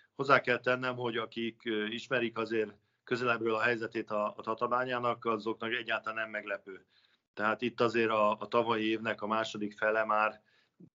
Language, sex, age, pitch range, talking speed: Hungarian, male, 50-69, 105-115 Hz, 160 wpm